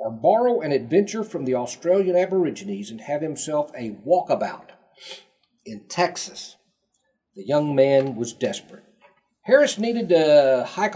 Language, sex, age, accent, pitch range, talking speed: English, male, 50-69, American, 125-170 Hz, 130 wpm